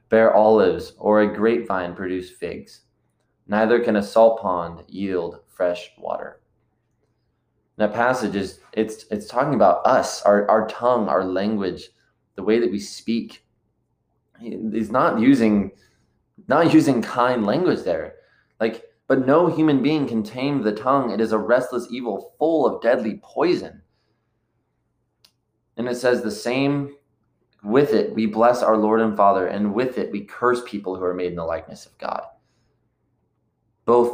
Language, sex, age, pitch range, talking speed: English, male, 20-39, 95-120 Hz, 155 wpm